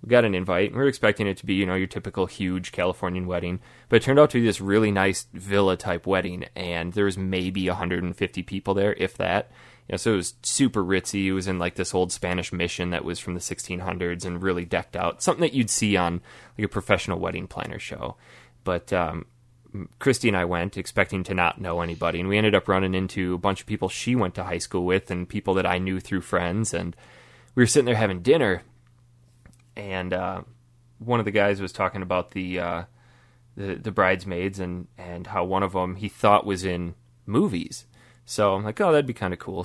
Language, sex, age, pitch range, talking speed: English, male, 20-39, 90-110 Hz, 220 wpm